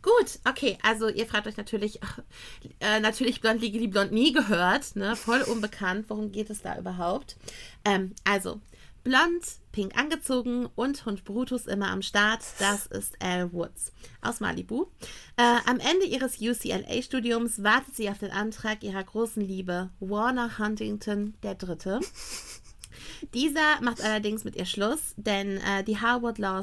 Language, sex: German, female